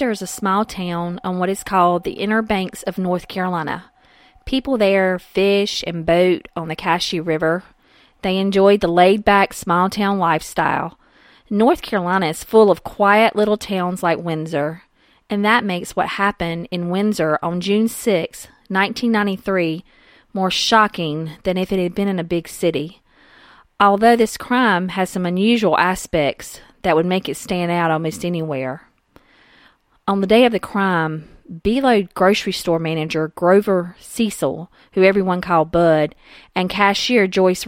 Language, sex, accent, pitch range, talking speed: English, female, American, 170-205 Hz, 155 wpm